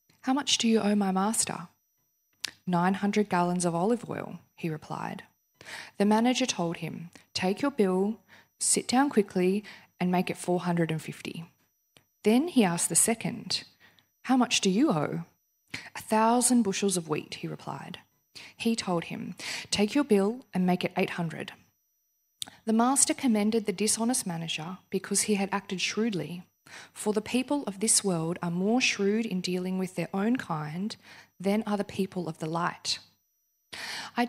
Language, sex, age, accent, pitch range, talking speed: English, female, 20-39, Australian, 180-225 Hz, 155 wpm